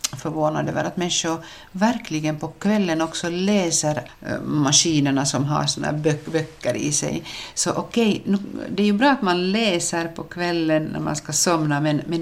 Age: 60-79